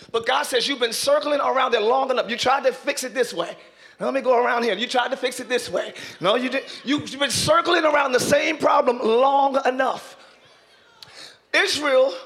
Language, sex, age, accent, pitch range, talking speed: English, male, 30-49, American, 245-300 Hz, 215 wpm